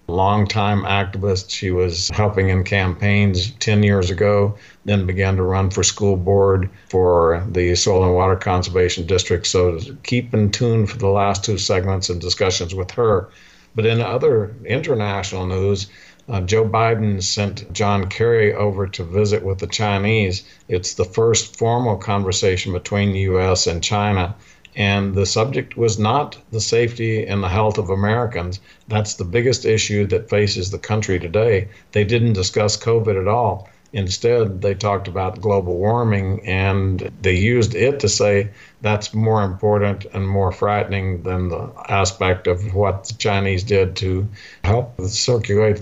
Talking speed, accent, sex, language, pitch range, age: 155 wpm, American, male, English, 95-105 Hz, 50-69